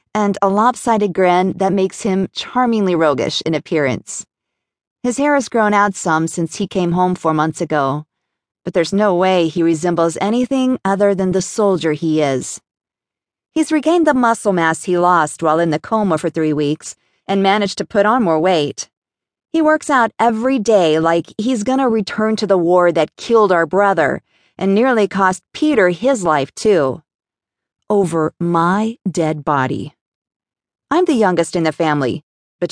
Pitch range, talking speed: 165-225 Hz, 170 wpm